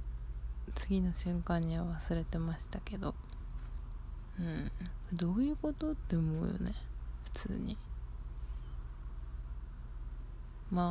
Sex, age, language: female, 20-39, Japanese